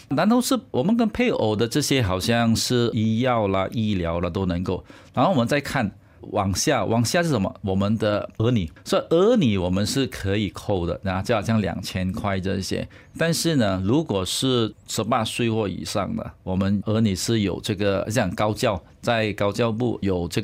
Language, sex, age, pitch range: Chinese, male, 50-69, 95-125 Hz